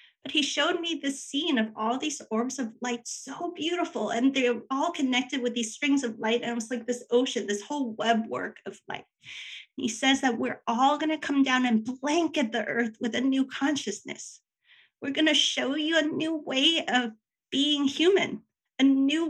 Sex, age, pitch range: female, 30-49, 235-295 Hz